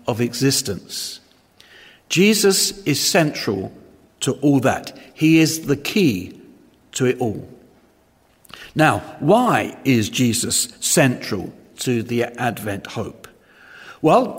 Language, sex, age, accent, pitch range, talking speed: English, male, 50-69, British, 130-170 Hz, 105 wpm